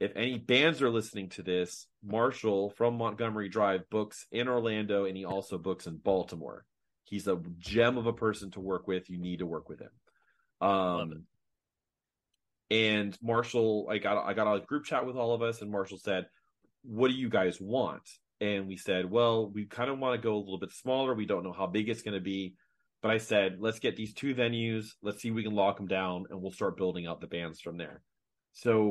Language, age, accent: English, 30-49, American